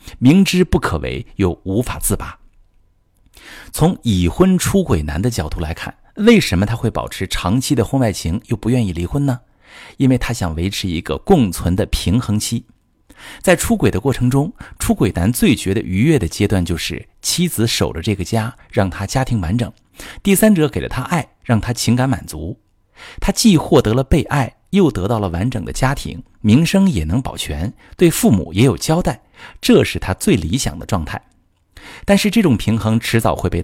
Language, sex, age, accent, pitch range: Chinese, male, 50-69, native, 90-125 Hz